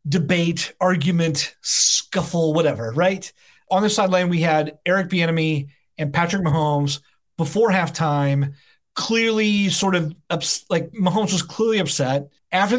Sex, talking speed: male, 125 wpm